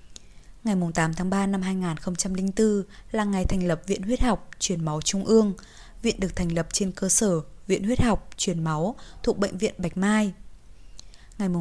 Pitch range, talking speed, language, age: 175-215 Hz, 180 wpm, Vietnamese, 20-39